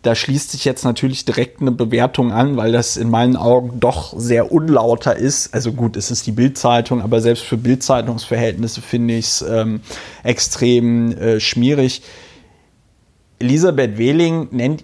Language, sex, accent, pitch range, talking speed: German, male, German, 115-140 Hz, 155 wpm